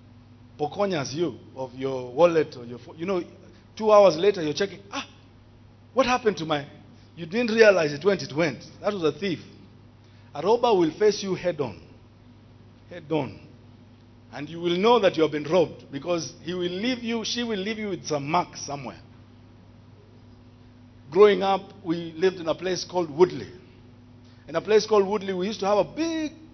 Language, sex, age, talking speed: English, male, 50-69, 190 wpm